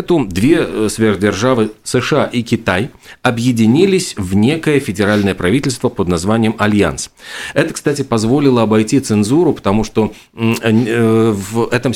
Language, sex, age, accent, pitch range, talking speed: Russian, male, 40-59, native, 95-120 Hz, 110 wpm